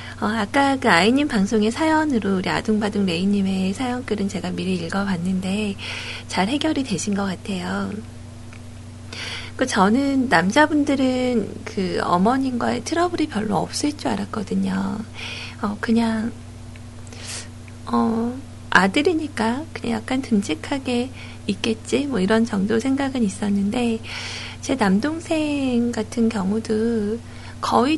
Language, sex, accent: Korean, female, native